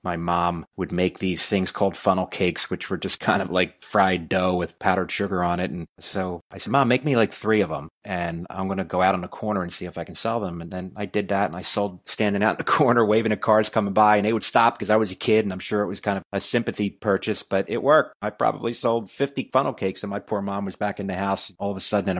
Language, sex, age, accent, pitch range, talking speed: English, male, 30-49, American, 90-105 Hz, 295 wpm